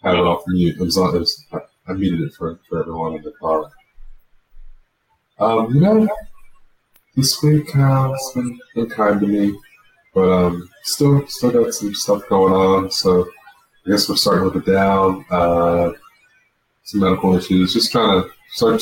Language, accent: English, American